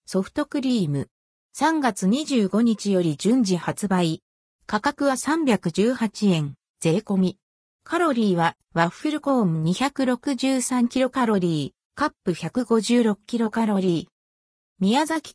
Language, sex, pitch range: Japanese, female, 180-260 Hz